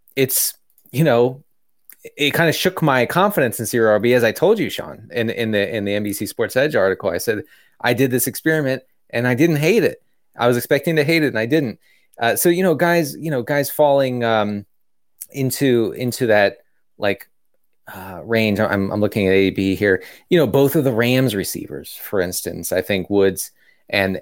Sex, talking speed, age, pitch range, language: male, 200 wpm, 30-49, 100-125 Hz, English